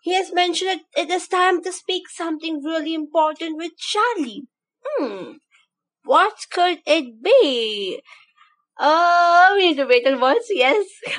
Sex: female